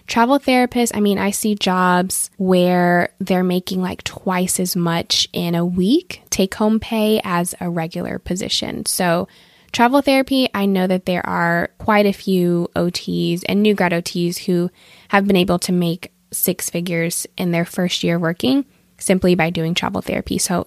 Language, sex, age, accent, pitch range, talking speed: English, female, 20-39, American, 180-225 Hz, 170 wpm